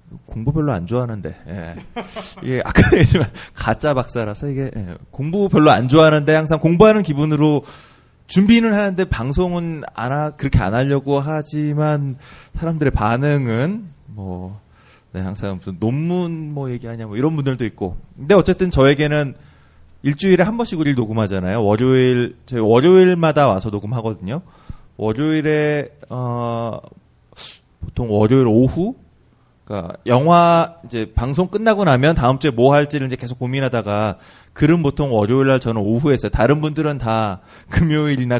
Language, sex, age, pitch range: Korean, male, 20-39, 115-155 Hz